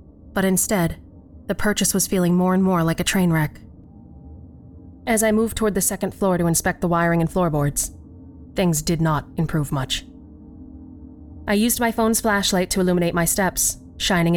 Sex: female